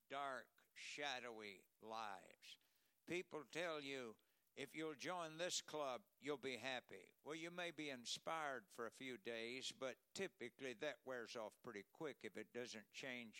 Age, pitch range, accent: 60-79, 115-155 Hz, American